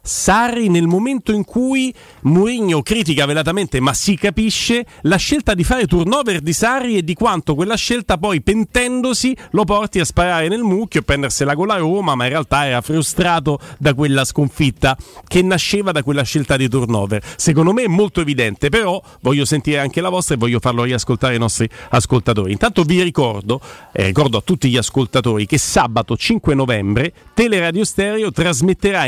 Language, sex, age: Italian, male, 40-59